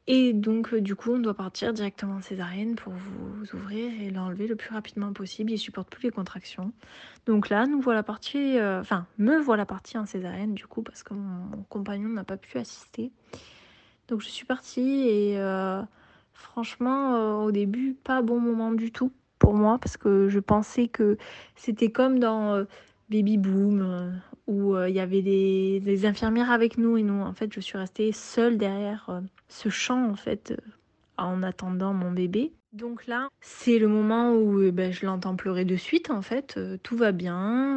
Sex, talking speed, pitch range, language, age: female, 200 wpm, 195-230 Hz, French, 20-39